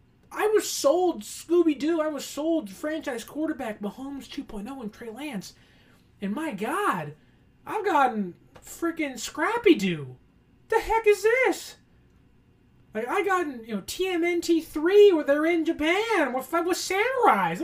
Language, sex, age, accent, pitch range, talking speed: English, male, 20-39, American, 200-330 Hz, 135 wpm